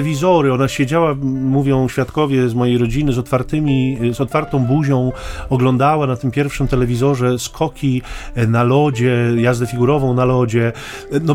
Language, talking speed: Polish, 130 wpm